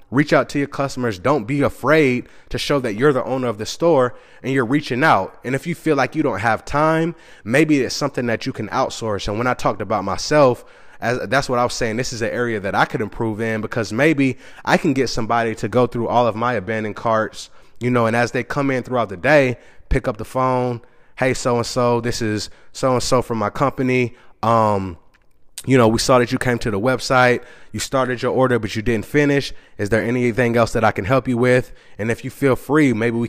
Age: 20-39